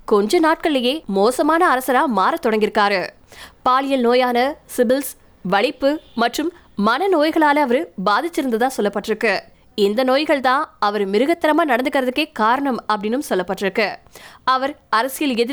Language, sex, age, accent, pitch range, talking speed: Tamil, female, 20-39, native, 220-290 Hz, 45 wpm